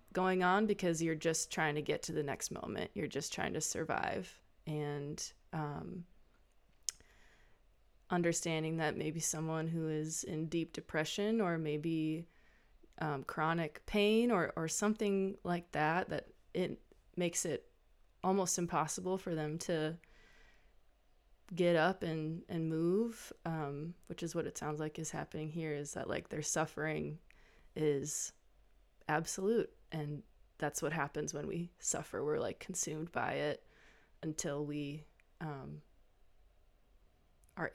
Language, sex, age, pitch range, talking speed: English, female, 20-39, 145-175 Hz, 135 wpm